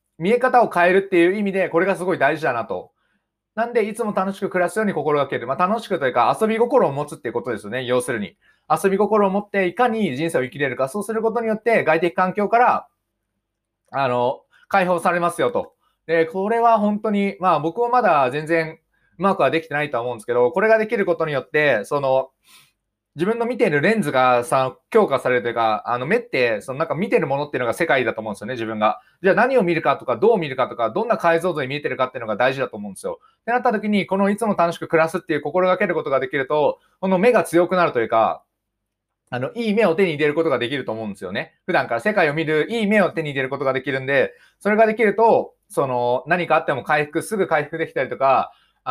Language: Japanese